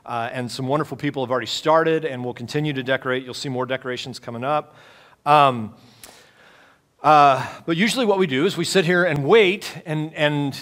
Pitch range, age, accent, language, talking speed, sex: 120-150 Hz, 40-59, American, English, 190 wpm, male